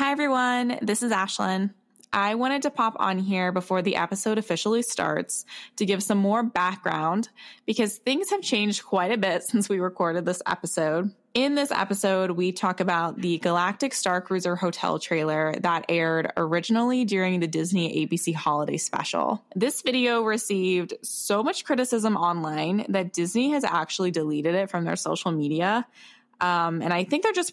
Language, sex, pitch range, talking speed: English, female, 175-230 Hz, 165 wpm